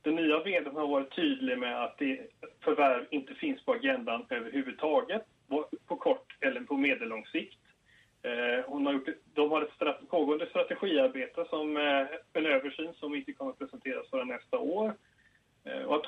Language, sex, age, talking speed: Swedish, male, 30-49, 140 wpm